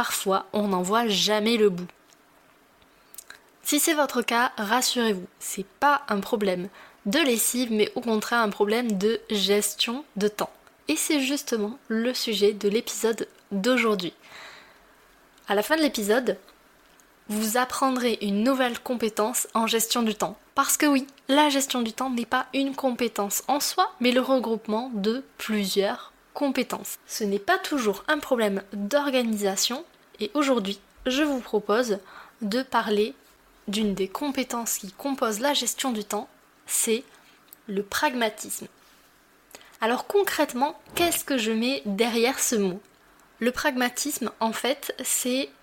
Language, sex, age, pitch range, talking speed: French, female, 20-39, 210-265 Hz, 140 wpm